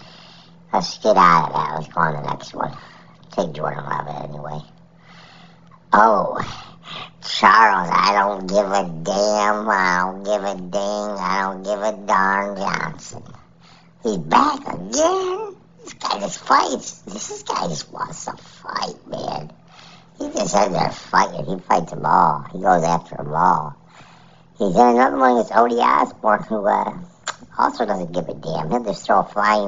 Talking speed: 165 wpm